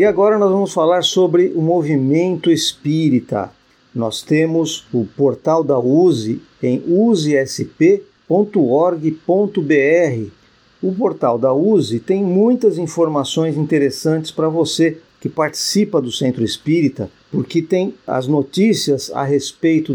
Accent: Brazilian